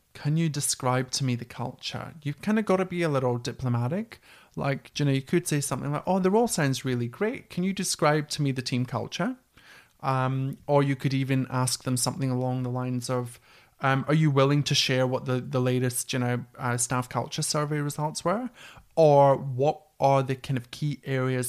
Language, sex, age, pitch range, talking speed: English, male, 30-49, 125-150 Hz, 210 wpm